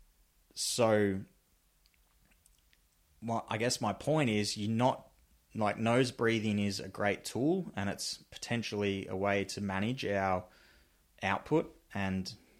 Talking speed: 125 wpm